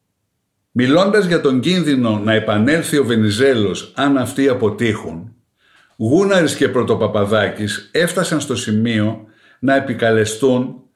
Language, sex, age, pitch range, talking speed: Greek, male, 60-79, 120-180 Hz, 105 wpm